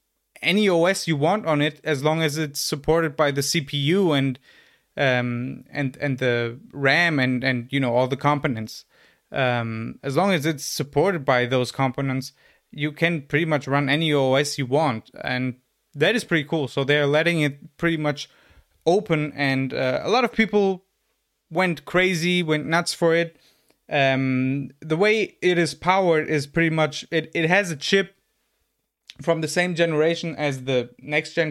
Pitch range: 140-170 Hz